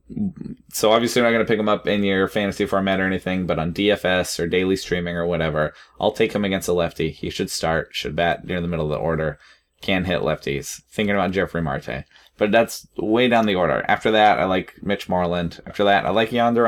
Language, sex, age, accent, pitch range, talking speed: English, male, 20-39, American, 90-105 Hz, 230 wpm